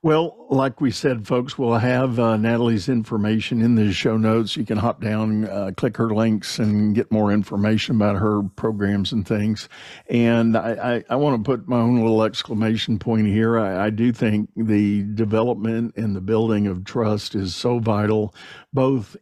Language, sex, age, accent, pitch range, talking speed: English, male, 50-69, American, 105-120 Hz, 185 wpm